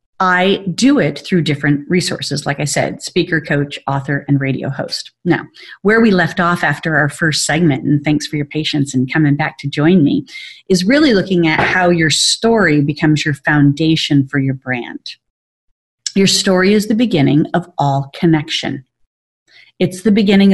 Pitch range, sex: 150-190 Hz, female